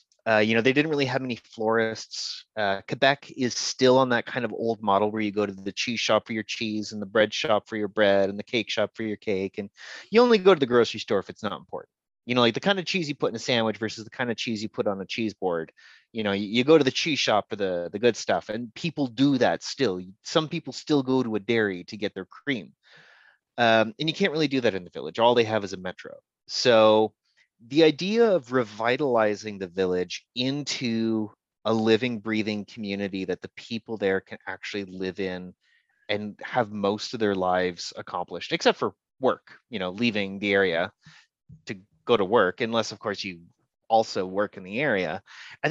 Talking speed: 225 wpm